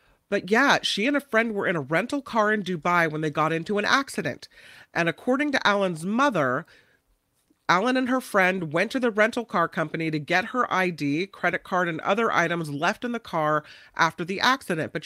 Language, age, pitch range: English, 40-59, 155-210 Hz